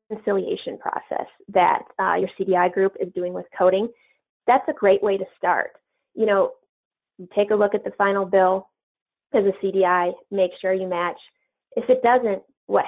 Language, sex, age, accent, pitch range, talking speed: English, female, 20-39, American, 175-210 Hz, 170 wpm